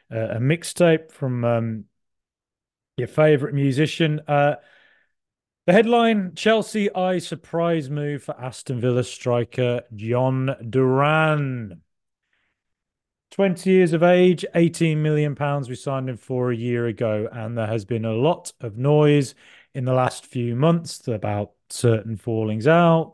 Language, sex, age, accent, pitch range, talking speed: English, male, 30-49, British, 115-150 Hz, 130 wpm